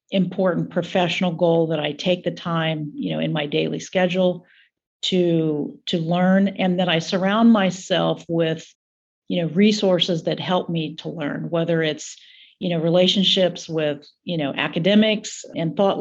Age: 50-69